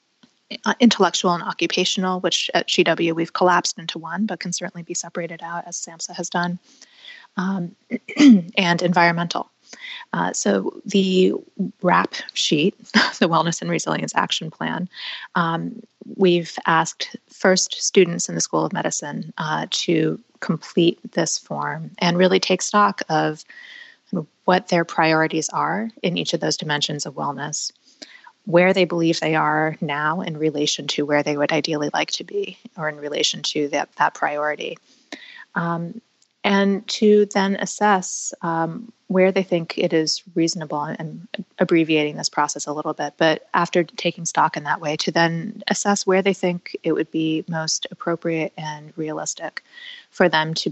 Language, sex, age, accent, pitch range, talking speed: English, female, 20-39, American, 160-195 Hz, 155 wpm